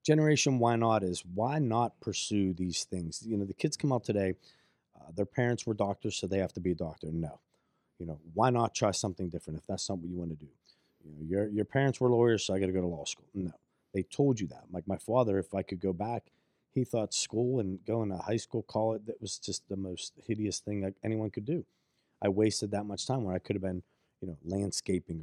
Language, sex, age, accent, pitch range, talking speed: English, male, 30-49, American, 95-130 Hz, 250 wpm